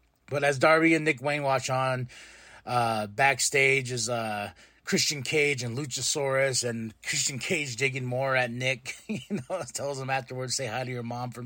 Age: 20-39